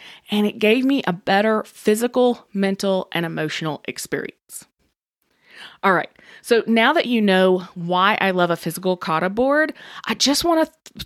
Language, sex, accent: English, female, American